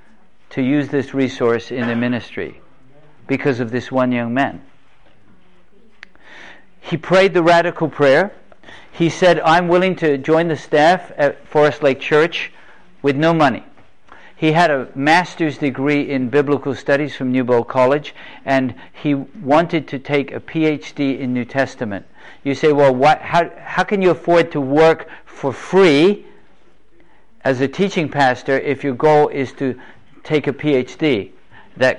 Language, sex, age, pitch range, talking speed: English, male, 50-69, 130-155 Hz, 150 wpm